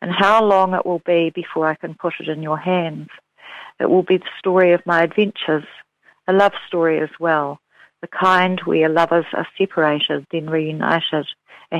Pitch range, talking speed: 165-195 Hz, 185 wpm